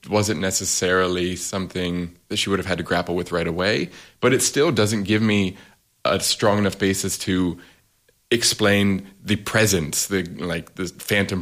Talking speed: 165 wpm